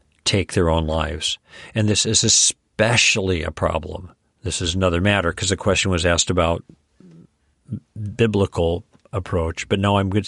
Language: English